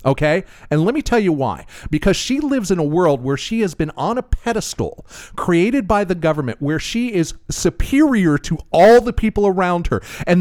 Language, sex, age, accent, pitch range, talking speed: English, male, 40-59, American, 150-235 Hz, 200 wpm